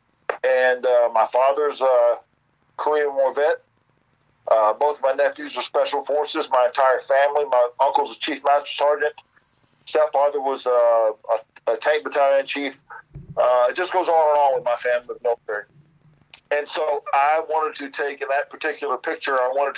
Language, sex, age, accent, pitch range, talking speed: English, male, 50-69, American, 125-150 Hz, 175 wpm